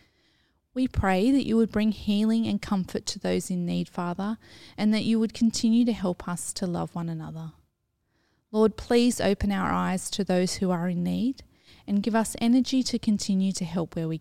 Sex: female